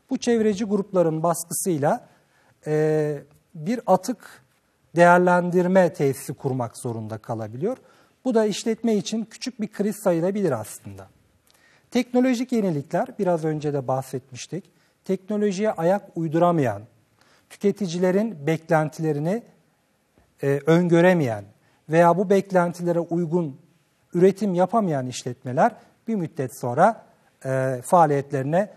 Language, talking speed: Turkish, 95 wpm